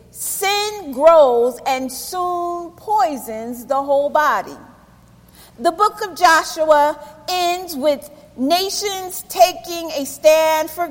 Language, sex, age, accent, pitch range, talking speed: English, female, 40-59, American, 290-360 Hz, 105 wpm